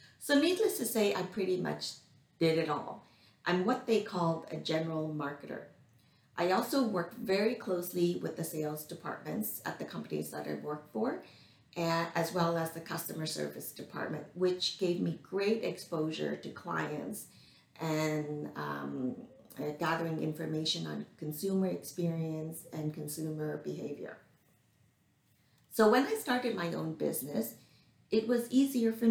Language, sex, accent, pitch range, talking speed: English, female, American, 155-200 Hz, 140 wpm